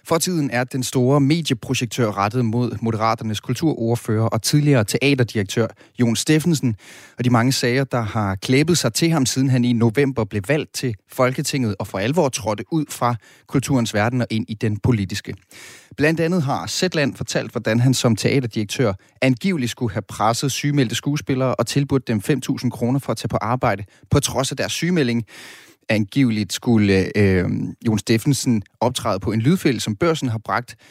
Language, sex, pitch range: Danish, male, 110-135 Hz